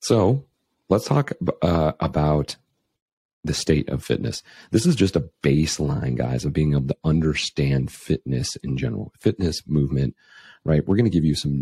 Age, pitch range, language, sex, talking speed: 40-59, 70-85 Hz, English, male, 165 wpm